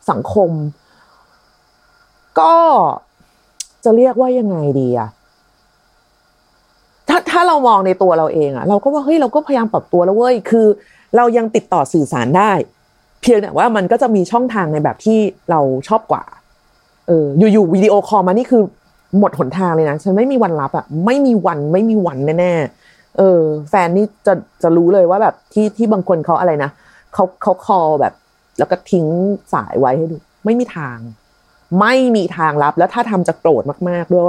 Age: 30-49